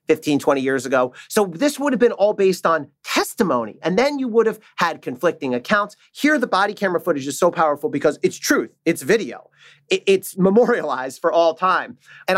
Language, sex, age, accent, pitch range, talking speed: English, male, 40-59, American, 155-205 Hz, 195 wpm